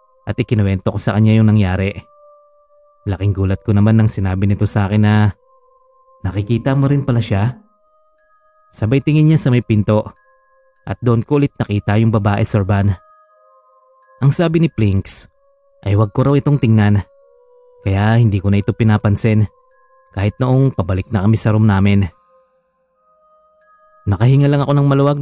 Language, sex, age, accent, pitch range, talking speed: Filipino, male, 20-39, native, 105-175 Hz, 150 wpm